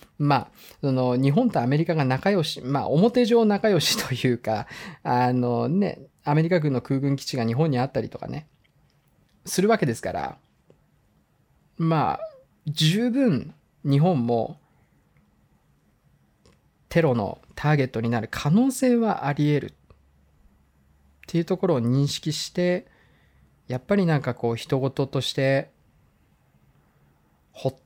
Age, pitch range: 20-39, 125-180 Hz